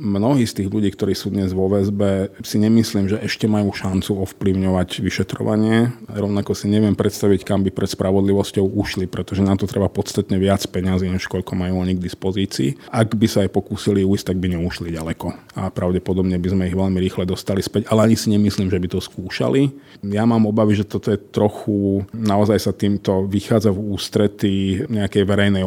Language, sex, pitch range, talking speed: Slovak, male, 95-110 Hz, 190 wpm